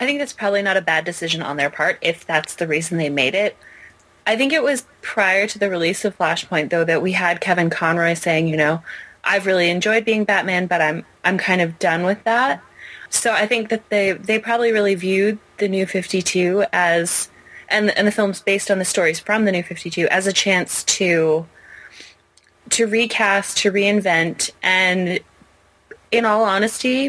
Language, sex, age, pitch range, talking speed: English, female, 20-39, 165-205 Hz, 195 wpm